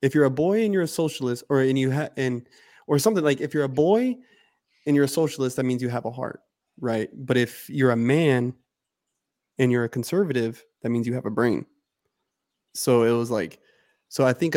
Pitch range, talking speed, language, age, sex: 125-150 Hz, 220 wpm, English, 20-39, male